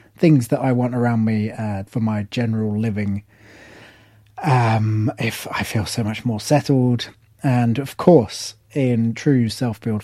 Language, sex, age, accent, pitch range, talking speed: English, male, 30-49, British, 110-140 Hz, 155 wpm